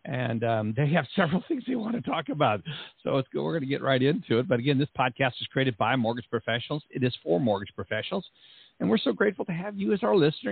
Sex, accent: male, American